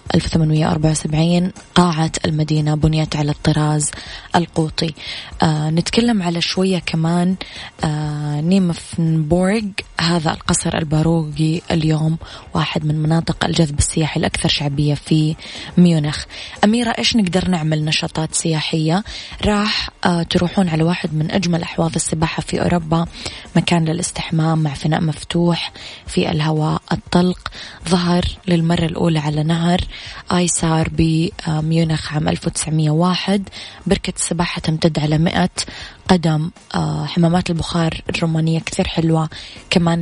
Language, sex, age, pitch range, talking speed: Arabic, female, 20-39, 155-175 Hz, 110 wpm